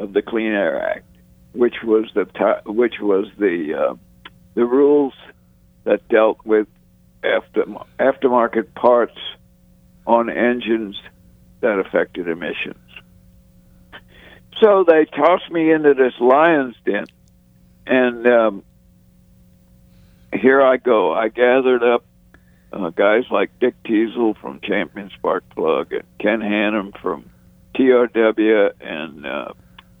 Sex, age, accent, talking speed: male, 60-79, American, 115 wpm